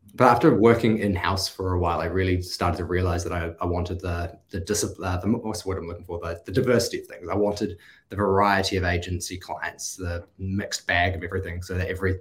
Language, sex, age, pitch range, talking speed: English, male, 20-39, 95-110 Hz, 220 wpm